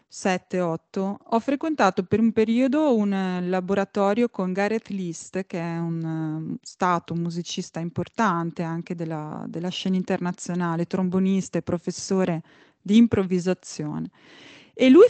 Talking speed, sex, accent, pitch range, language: 110 wpm, female, native, 185-250 Hz, Italian